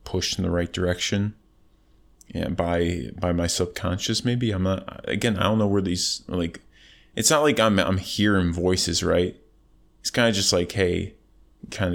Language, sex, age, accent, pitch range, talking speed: English, male, 20-39, American, 85-105 Hz, 180 wpm